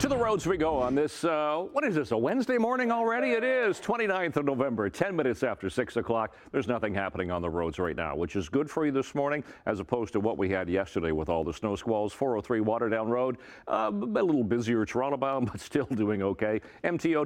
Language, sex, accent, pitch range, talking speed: English, male, American, 100-140 Hz, 230 wpm